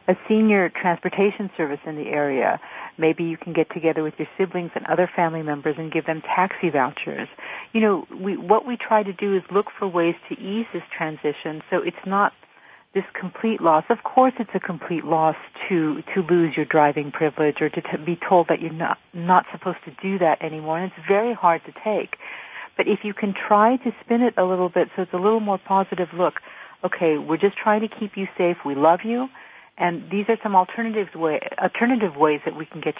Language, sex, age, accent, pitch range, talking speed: English, female, 50-69, American, 160-210 Hz, 215 wpm